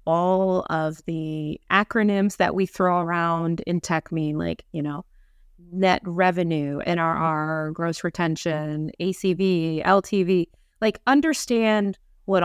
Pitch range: 170-210 Hz